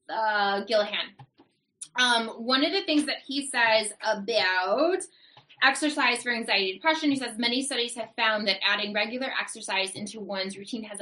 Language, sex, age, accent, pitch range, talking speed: English, female, 20-39, American, 200-270 Hz, 160 wpm